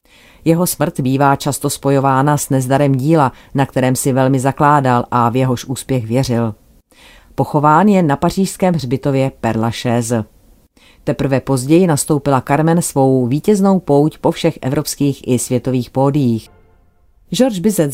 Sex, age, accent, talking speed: female, 40-59, native, 135 wpm